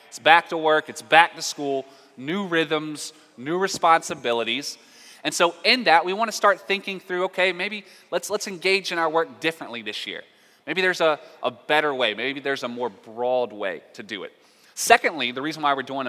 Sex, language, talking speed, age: male, English, 200 wpm, 20-39